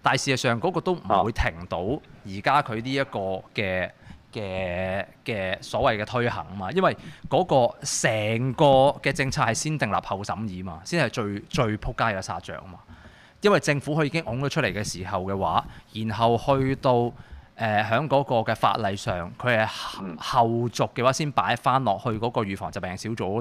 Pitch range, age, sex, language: 95-125 Hz, 20-39, male, Chinese